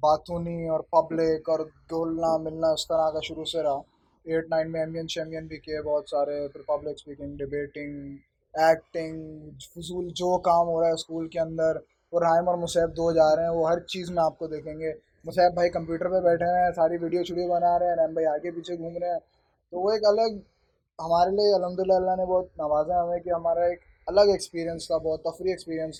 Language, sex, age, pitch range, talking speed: Urdu, male, 20-39, 160-185 Hz, 210 wpm